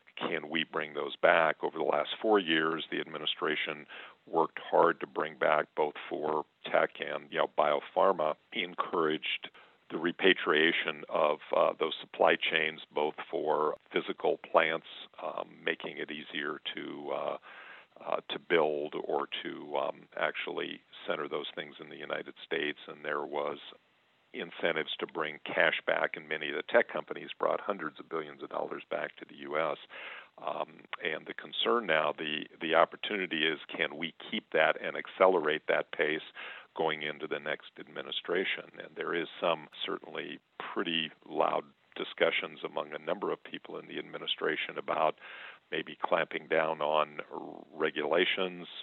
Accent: American